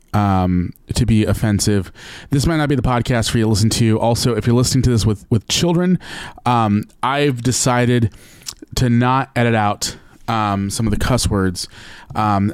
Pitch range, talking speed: 100-120 Hz, 180 wpm